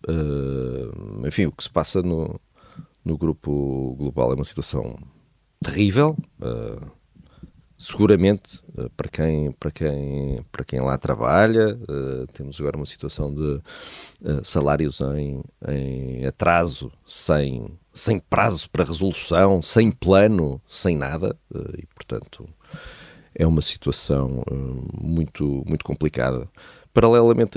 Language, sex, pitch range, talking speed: Portuguese, male, 70-100 Hz, 100 wpm